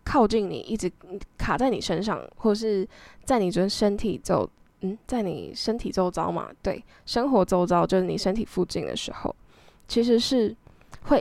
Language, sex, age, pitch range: Chinese, female, 10-29, 185-240 Hz